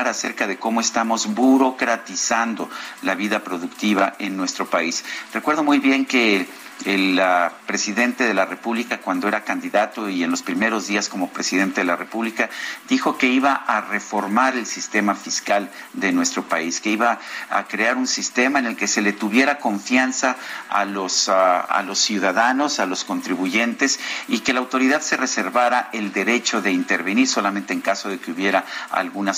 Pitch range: 100-130 Hz